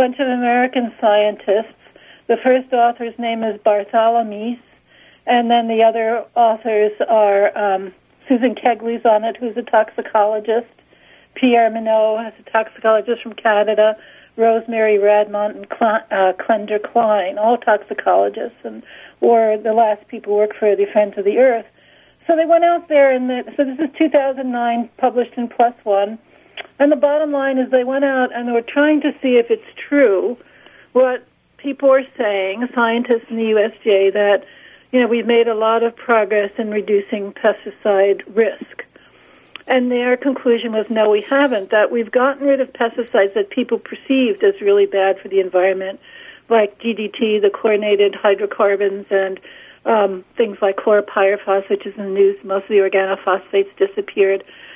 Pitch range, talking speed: 210-255 Hz, 165 wpm